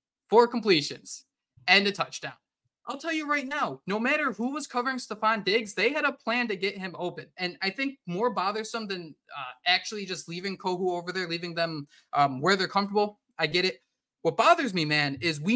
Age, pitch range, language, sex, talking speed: 20-39, 165-225 Hz, English, male, 205 wpm